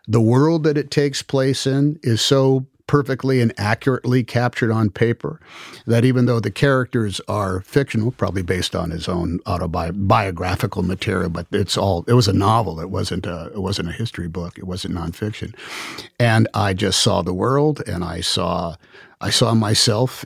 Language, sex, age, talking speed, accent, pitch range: English, male, 50-69, 175 wpm, American, 95-125 Hz